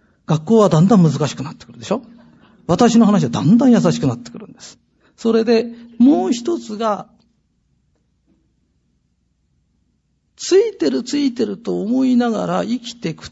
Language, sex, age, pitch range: Japanese, male, 40-59, 170-260 Hz